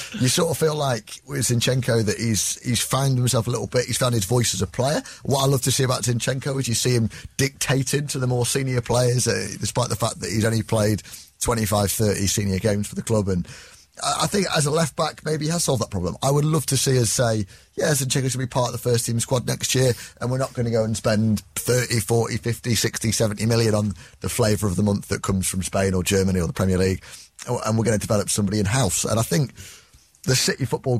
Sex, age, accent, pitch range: male, 30-49, British, 95-125 Hz